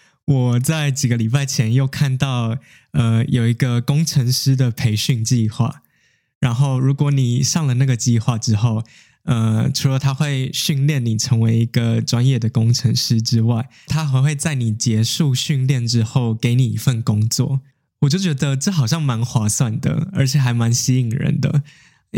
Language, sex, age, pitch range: Chinese, male, 20-39, 120-140 Hz